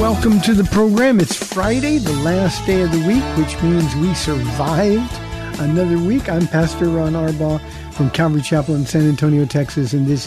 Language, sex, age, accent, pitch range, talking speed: English, male, 50-69, American, 145-175 Hz, 180 wpm